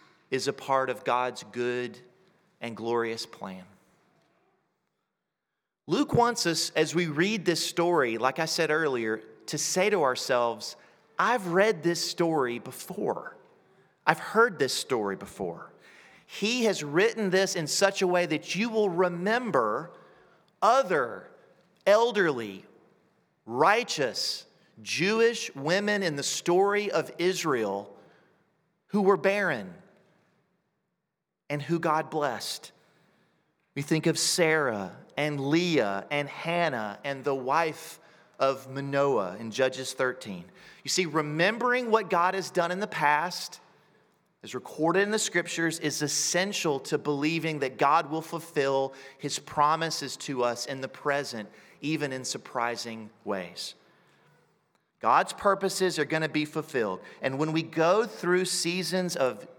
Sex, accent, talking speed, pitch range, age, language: male, American, 130 wpm, 135-185 Hz, 40-59, English